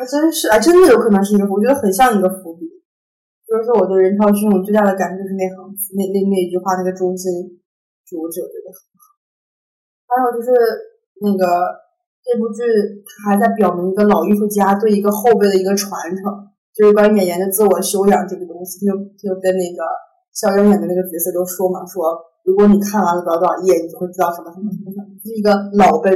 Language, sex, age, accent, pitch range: Chinese, female, 20-39, native, 190-225 Hz